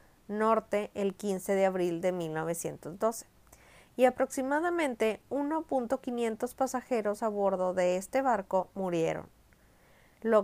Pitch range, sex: 190-240 Hz, female